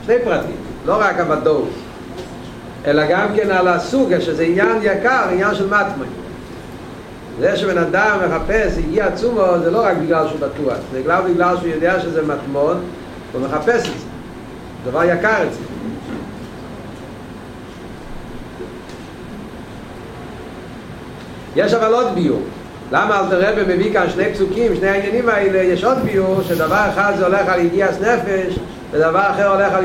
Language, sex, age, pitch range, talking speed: Hebrew, male, 50-69, 160-200 Hz, 140 wpm